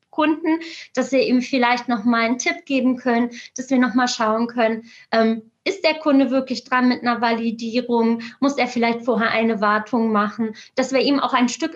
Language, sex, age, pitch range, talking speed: German, female, 20-39, 235-285 Hz, 195 wpm